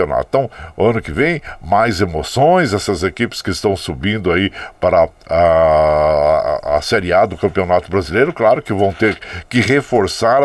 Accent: Brazilian